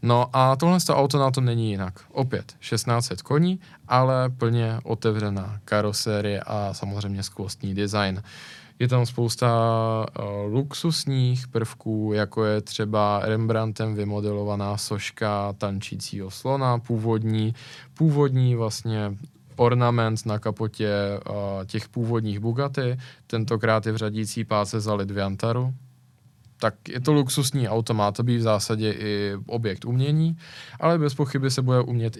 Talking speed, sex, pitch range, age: 125 wpm, male, 110-130 Hz, 20-39